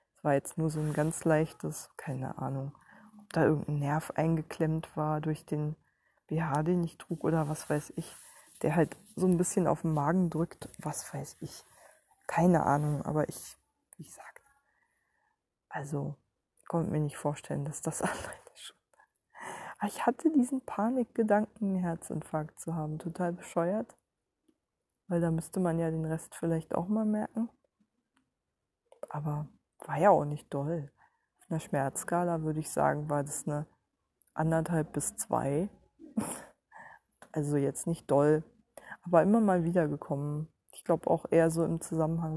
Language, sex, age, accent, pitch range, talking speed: German, female, 20-39, German, 150-200 Hz, 155 wpm